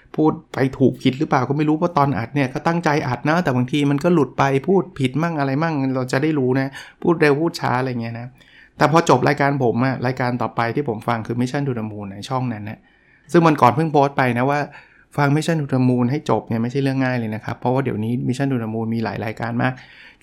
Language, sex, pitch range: Thai, male, 120-145 Hz